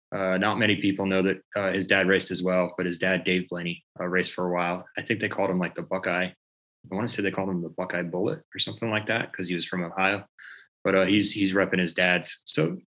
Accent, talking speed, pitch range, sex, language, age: American, 265 wpm, 95-110 Hz, male, English, 20-39